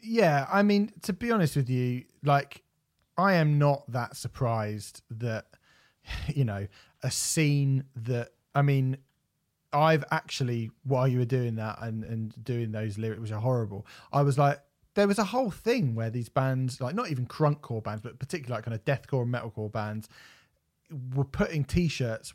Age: 30-49